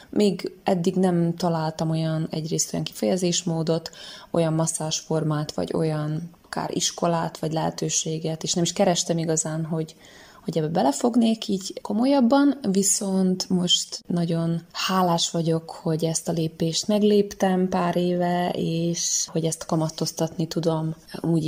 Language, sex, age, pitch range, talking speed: Hungarian, female, 20-39, 160-185 Hz, 125 wpm